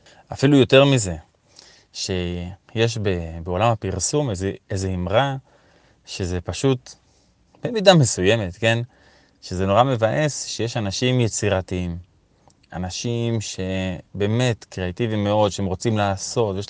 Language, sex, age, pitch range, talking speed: Hebrew, male, 20-39, 95-135 Hz, 95 wpm